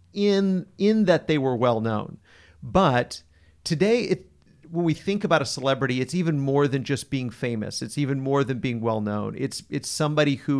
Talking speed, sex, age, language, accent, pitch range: 190 wpm, male, 40-59, English, American, 120-160 Hz